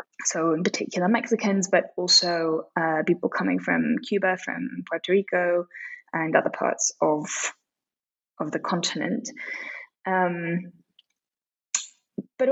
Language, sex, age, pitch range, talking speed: English, female, 10-29, 175-235 Hz, 110 wpm